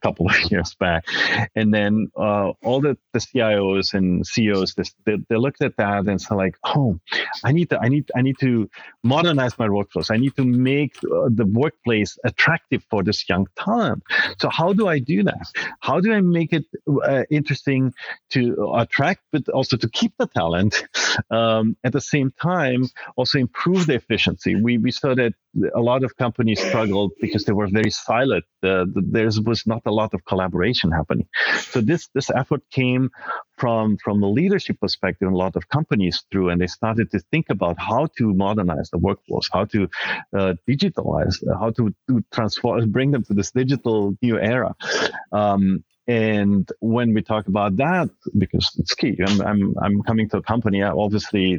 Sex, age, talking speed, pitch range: male, 40-59, 185 wpm, 100-130 Hz